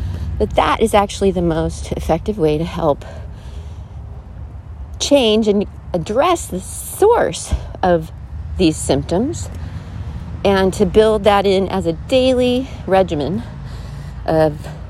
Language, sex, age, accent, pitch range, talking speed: English, female, 40-59, American, 135-210 Hz, 115 wpm